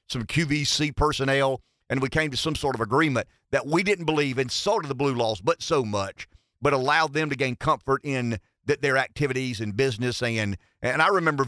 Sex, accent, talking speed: male, American, 210 wpm